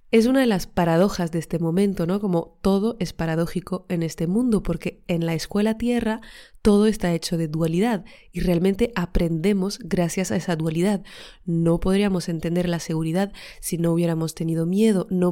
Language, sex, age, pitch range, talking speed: Spanish, female, 20-39, 175-215 Hz, 170 wpm